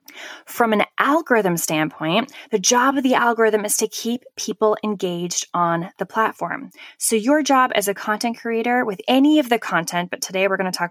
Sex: female